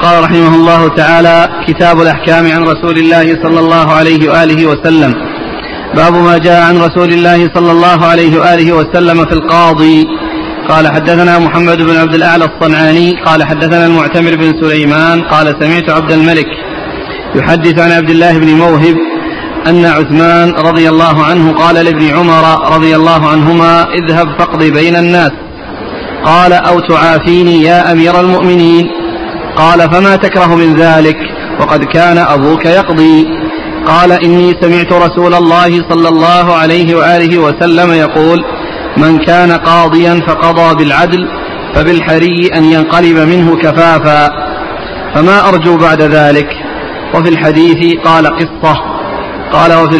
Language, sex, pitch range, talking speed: Arabic, male, 160-170 Hz, 130 wpm